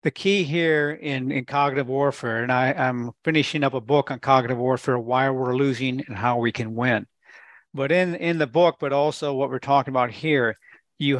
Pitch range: 135-165 Hz